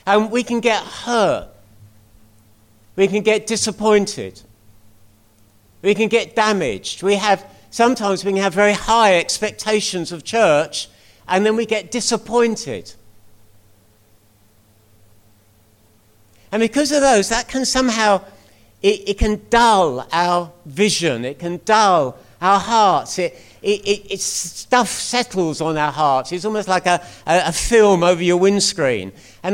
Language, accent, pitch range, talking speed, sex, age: English, British, 145-220 Hz, 135 wpm, male, 50-69